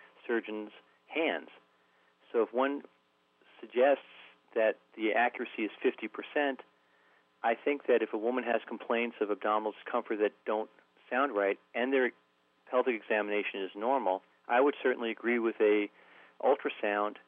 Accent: American